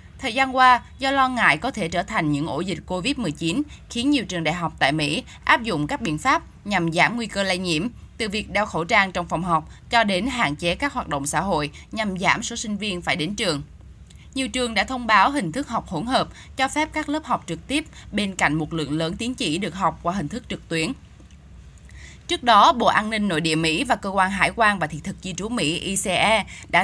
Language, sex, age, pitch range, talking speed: Vietnamese, female, 10-29, 165-240 Hz, 245 wpm